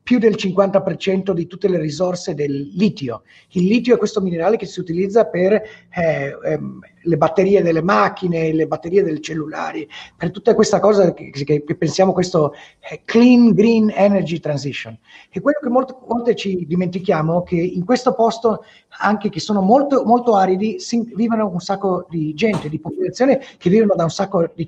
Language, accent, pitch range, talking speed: Italian, native, 175-225 Hz, 180 wpm